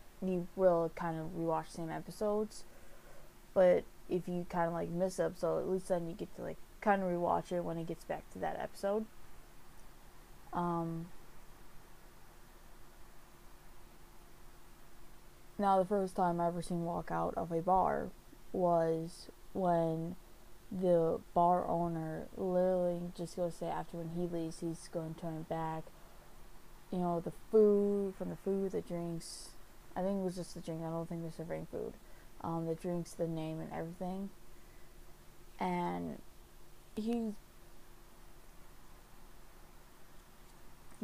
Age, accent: 20-39, American